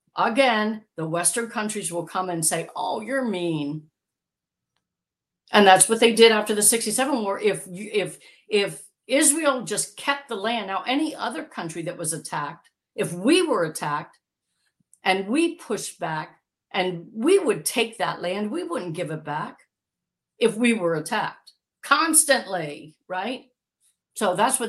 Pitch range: 160-230 Hz